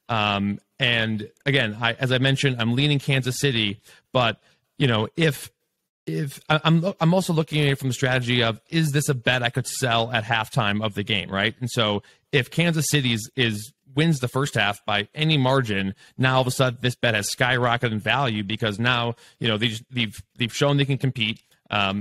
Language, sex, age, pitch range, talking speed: English, male, 30-49, 110-135 Hz, 210 wpm